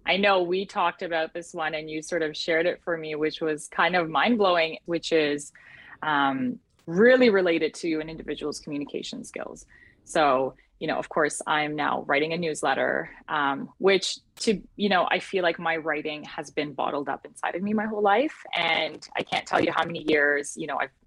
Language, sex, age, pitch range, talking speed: English, female, 20-39, 150-185 Hz, 205 wpm